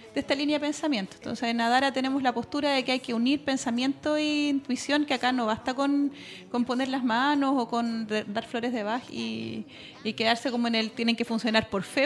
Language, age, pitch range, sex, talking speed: Spanish, 30-49, 215-265 Hz, female, 225 wpm